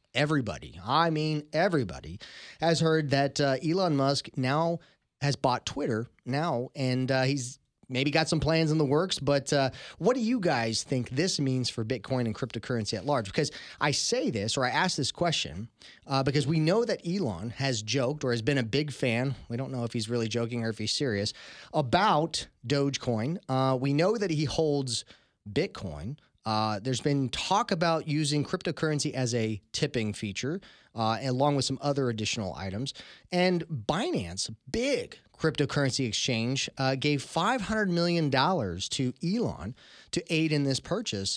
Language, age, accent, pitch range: English, 30-49, American, 120-160 Hz